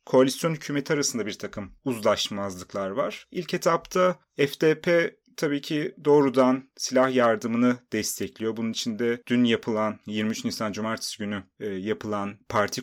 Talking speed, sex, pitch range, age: 120 wpm, male, 110-140 Hz, 30-49